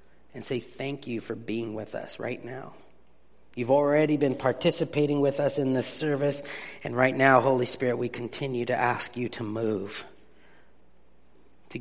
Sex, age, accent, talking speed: male, 30-49, American, 165 wpm